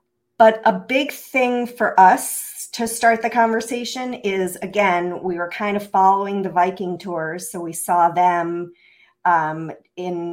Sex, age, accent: female, 40-59, American